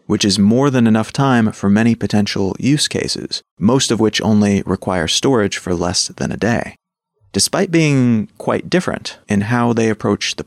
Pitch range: 100-130 Hz